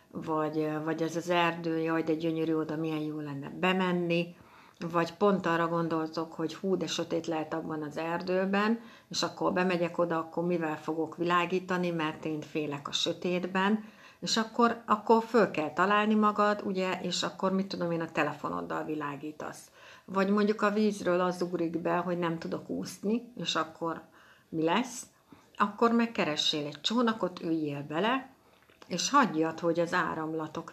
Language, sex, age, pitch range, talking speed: Hungarian, female, 60-79, 160-195 Hz, 155 wpm